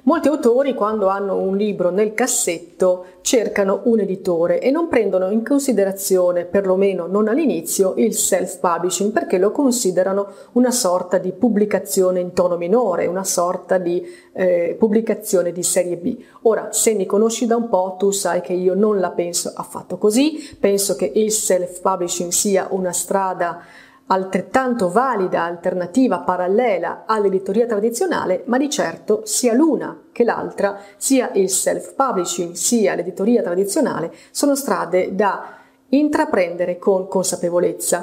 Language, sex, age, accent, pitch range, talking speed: Italian, female, 30-49, native, 185-235 Hz, 140 wpm